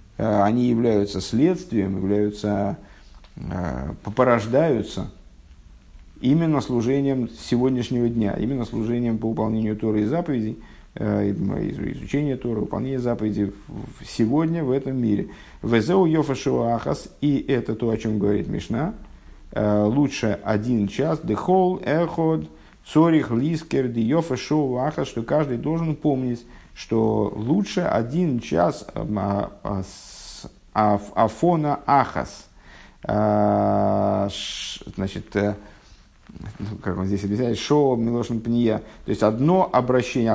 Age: 50-69